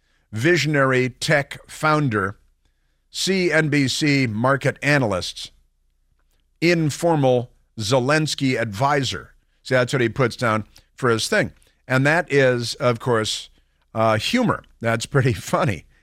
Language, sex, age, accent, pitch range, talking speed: English, male, 50-69, American, 110-145 Hz, 105 wpm